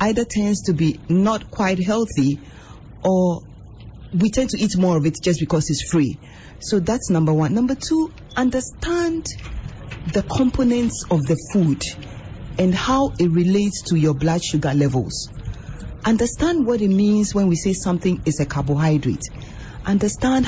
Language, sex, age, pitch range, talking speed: English, female, 40-59, 145-225 Hz, 150 wpm